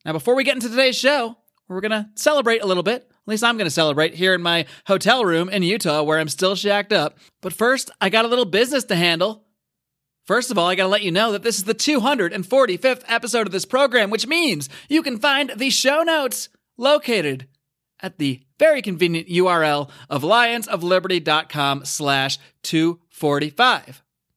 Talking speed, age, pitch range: 190 wpm, 30-49, 175-245 Hz